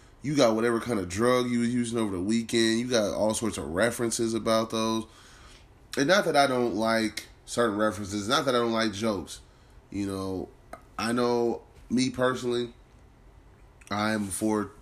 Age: 20-39